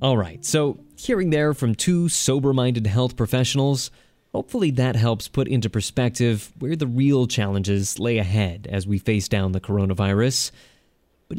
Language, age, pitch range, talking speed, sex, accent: English, 20-39, 105-140 Hz, 155 wpm, male, American